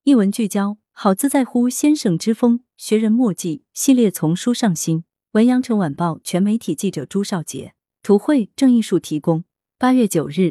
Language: Chinese